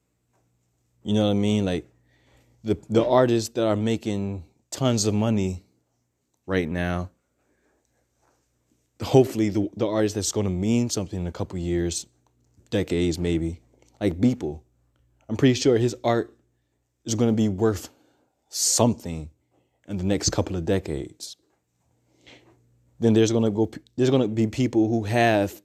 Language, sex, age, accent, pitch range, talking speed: English, male, 20-39, American, 85-120 Hz, 150 wpm